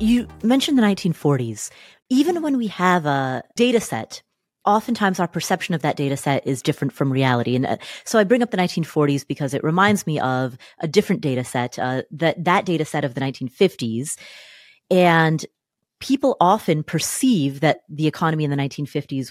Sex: female